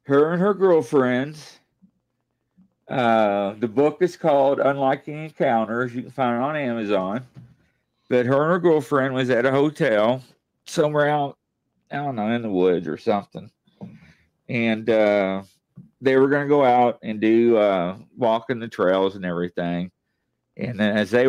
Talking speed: 160 wpm